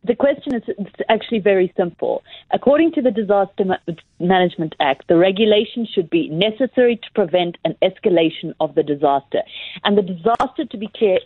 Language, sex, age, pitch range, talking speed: English, female, 40-59, 175-225 Hz, 160 wpm